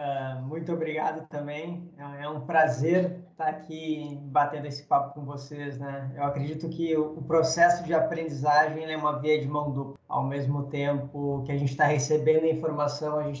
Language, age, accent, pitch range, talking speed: Portuguese, 20-39, Brazilian, 140-160 Hz, 175 wpm